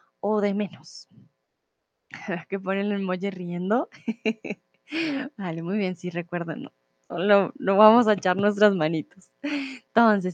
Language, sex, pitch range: Spanish, female, 195-260 Hz